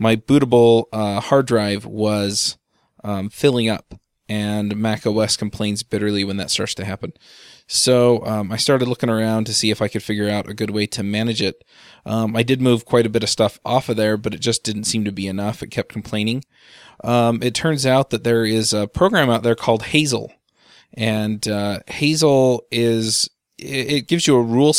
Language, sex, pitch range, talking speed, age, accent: English, male, 105-120 Hz, 200 wpm, 20-39, American